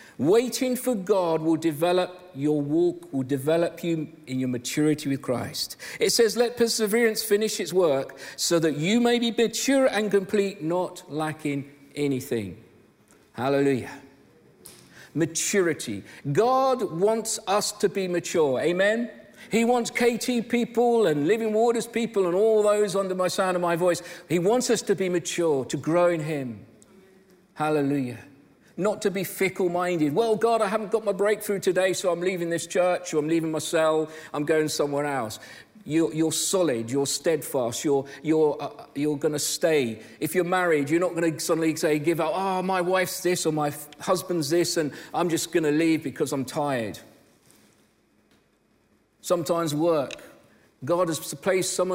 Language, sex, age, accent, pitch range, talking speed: English, male, 50-69, British, 150-200 Hz, 165 wpm